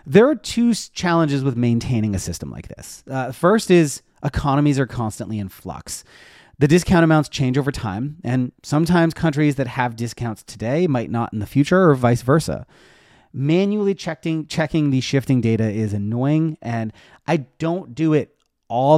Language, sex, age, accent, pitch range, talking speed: English, male, 30-49, American, 115-150 Hz, 170 wpm